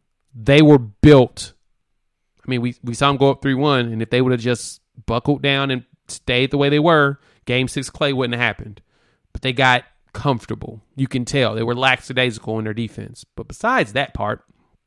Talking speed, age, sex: 200 wpm, 30-49, male